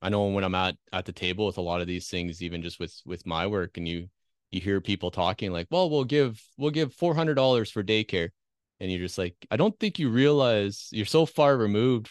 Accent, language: American, English